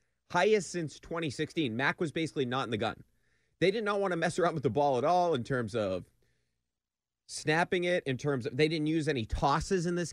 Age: 30-49